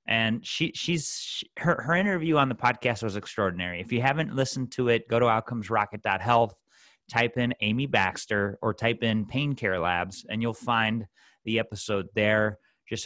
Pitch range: 100-120 Hz